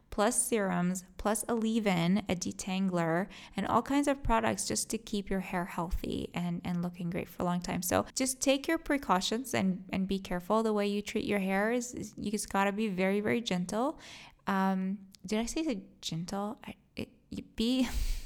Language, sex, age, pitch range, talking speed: English, female, 20-39, 180-225 Hz, 185 wpm